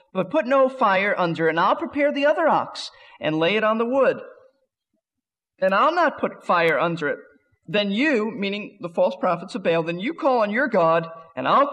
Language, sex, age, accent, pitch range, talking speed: English, male, 40-59, American, 175-270 Hz, 210 wpm